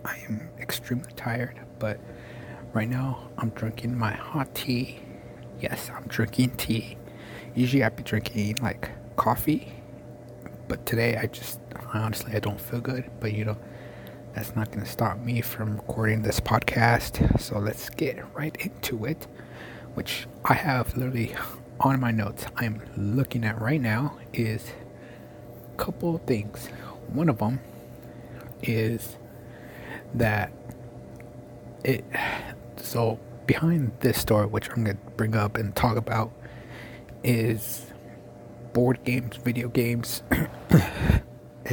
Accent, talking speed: American, 130 wpm